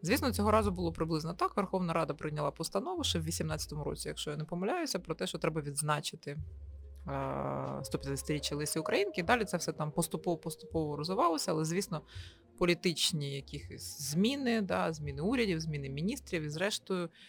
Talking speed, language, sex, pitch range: 150 wpm, Ukrainian, female, 150-190 Hz